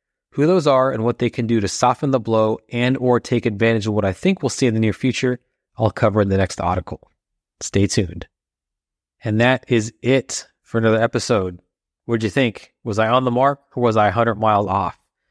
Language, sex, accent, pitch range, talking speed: English, male, American, 105-120 Hz, 220 wpm